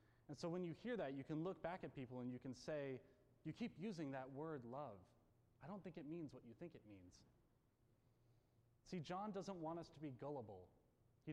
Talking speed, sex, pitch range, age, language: 215 wpm, male, 120-155 Hz, 30-49, English